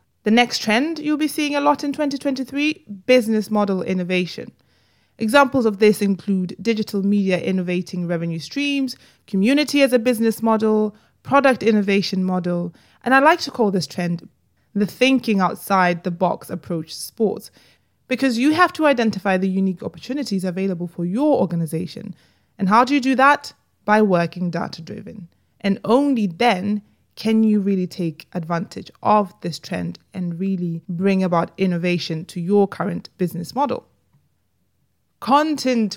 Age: 20-39